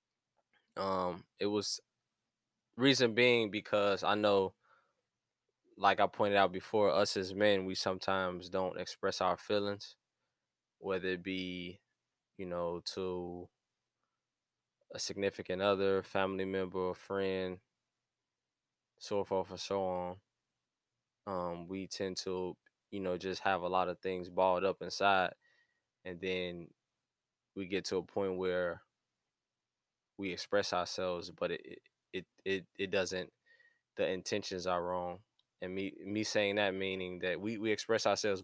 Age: 10-29